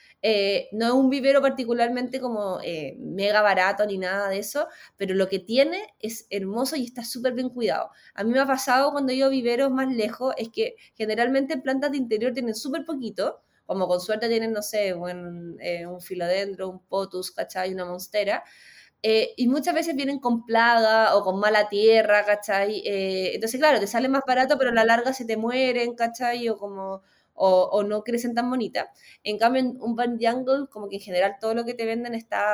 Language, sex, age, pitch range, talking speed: Spanish, female, 20-39, 195-255 Hz, 205 wpm